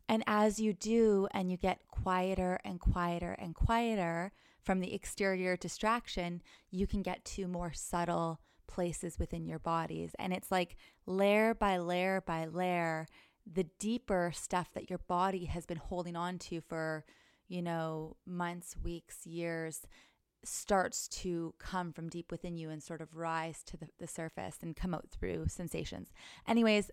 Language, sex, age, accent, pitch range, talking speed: English, female, 20-39, American, 170-195 Hz, 160 wpm